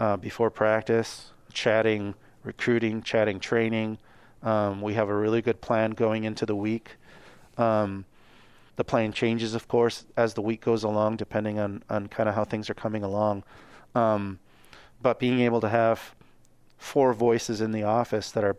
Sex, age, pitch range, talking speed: male, 30-49, 100-115 Hz, 170 wpm